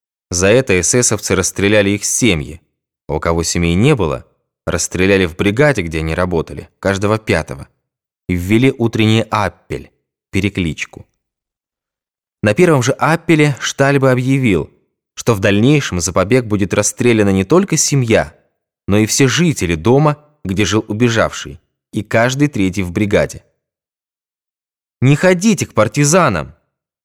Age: 20-39